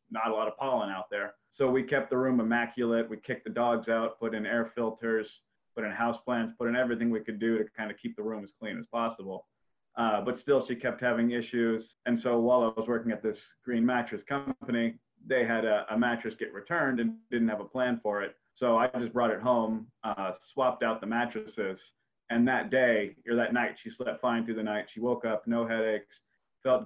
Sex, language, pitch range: male, English, 110-120 Hz